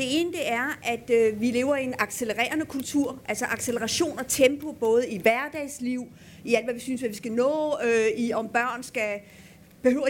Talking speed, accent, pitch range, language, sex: 200 wpm, native, 230-280 Hz, Danish, female